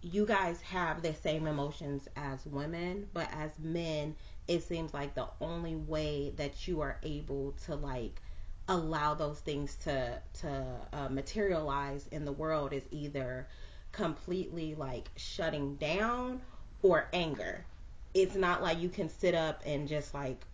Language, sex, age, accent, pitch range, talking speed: English, female, 30-49, American, 140-170 Hz, 150 wpm